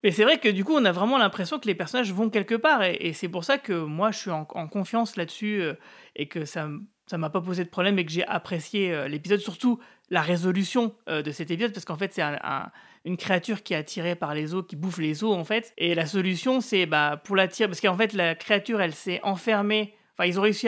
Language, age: French, 30-49